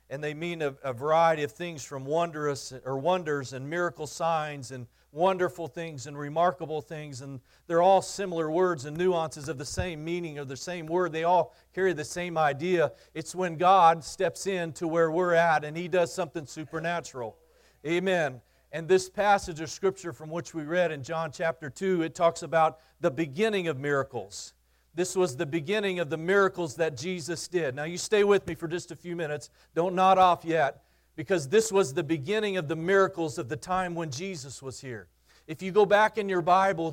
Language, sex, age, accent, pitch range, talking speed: English, male, 40-59, American, 160-190 Hz, 200 wpm